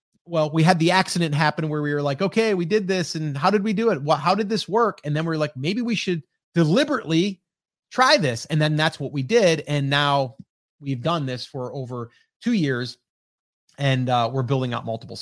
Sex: male